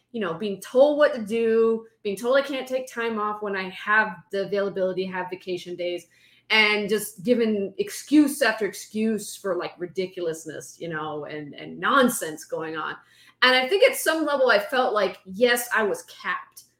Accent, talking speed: American, 180 wpm